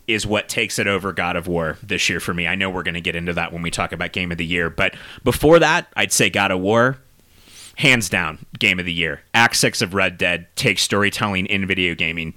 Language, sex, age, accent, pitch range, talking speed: English, male, 30-49, American, 90-115 Hz, 250 wpm